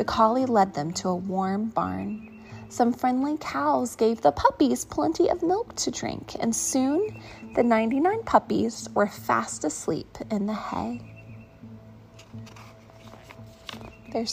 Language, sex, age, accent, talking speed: English, female, 20-39, American, 130 wpm